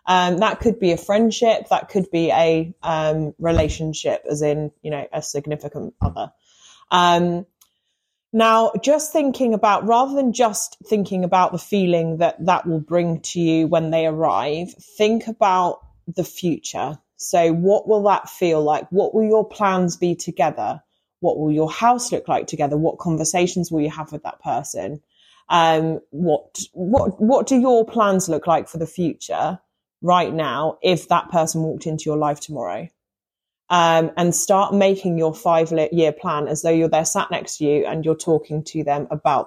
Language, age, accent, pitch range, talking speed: English, 30-49, British, 155-195 Hz, 175 wpm